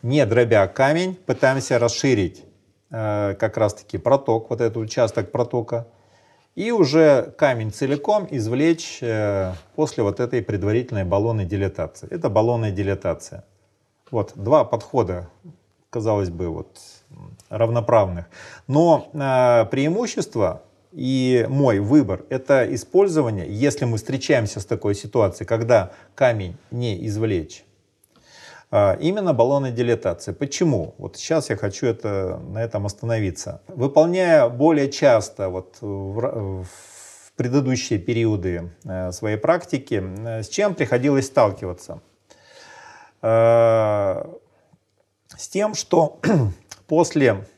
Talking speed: 105 wpm